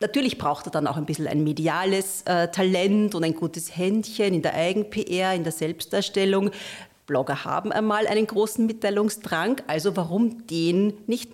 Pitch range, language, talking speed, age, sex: 160-195 Hz, German, 165 wpm, 40-59, female